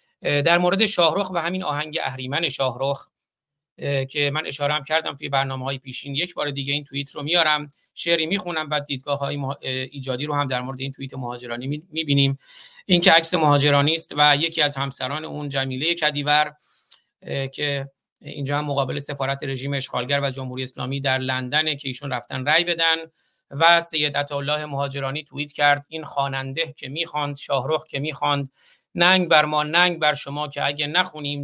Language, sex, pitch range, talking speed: Persian, male, 140-160 Hz, 165 wpm